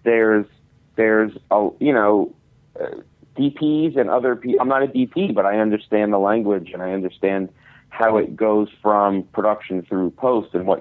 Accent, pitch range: American, 95-125 Hz